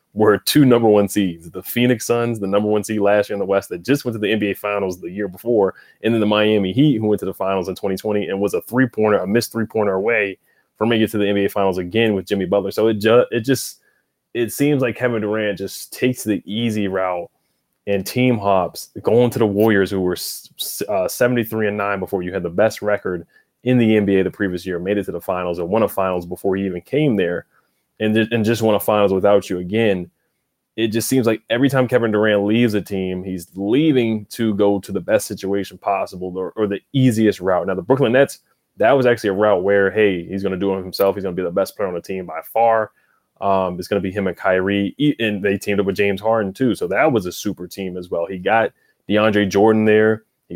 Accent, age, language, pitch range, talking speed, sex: American, 20-39, English, 95-110 Hz, 250 wpm, male